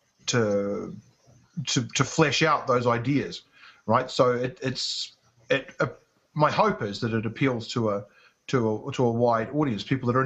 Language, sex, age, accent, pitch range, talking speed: English, male, 30-49, Australian, 115-140 Hz, 175 wpm